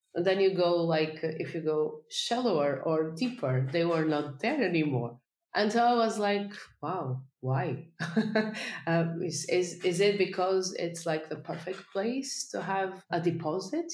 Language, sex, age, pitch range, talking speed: English, female, 30-49, 135-170 Hz, 165 wpm